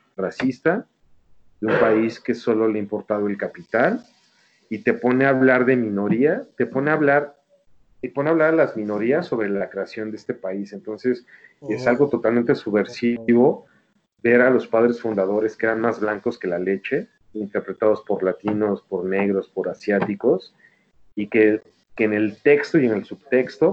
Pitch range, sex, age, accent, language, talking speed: 105-125 Hz, male, 40-59, Mexican, Spanish, 175 wpm